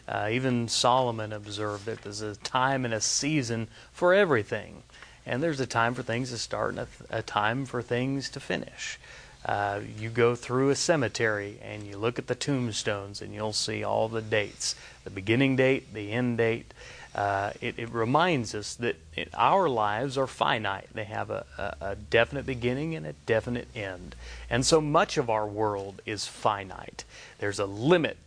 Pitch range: 110-135 Hz